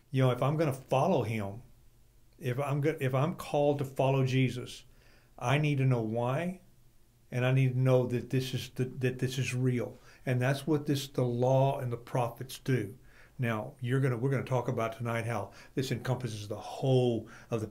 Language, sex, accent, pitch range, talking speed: English, male, American, 120-140 Hz, 205 wpm